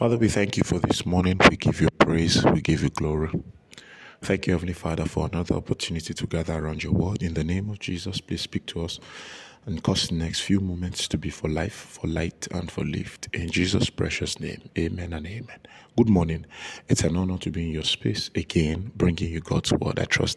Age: 50-69